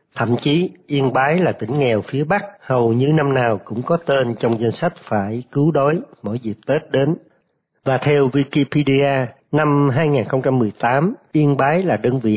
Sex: male